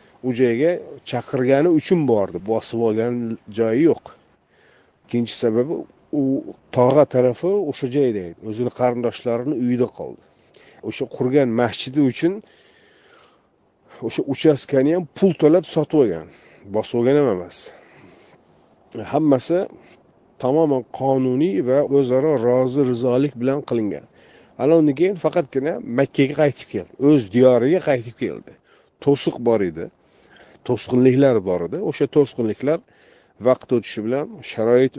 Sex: male